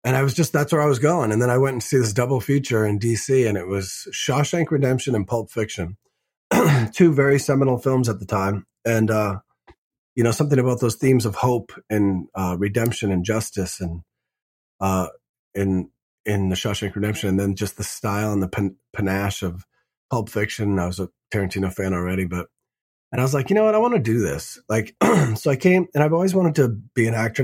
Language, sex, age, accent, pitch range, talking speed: English, male, 30-49, American, 100-130 Hz, 215 wpm